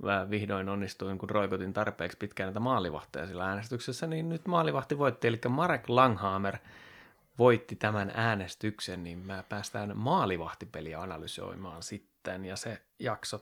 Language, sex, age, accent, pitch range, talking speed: Finnish, male, 30-49, native, 105-130 Hz, 135 wpm